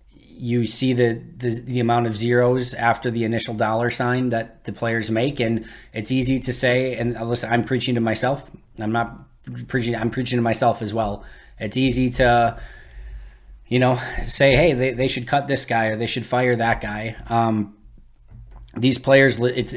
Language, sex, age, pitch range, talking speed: English, male, 20-39, 110-125 Hz, 180 wpm